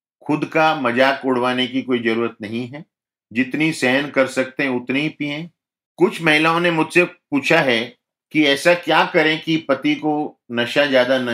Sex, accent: male, native